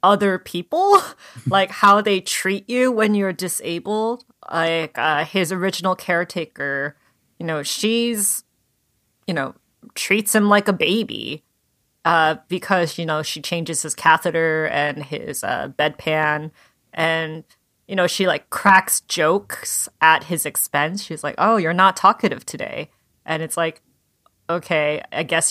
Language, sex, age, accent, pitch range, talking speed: English, female, 30-49, American, 155-195 Hz, 140 wpm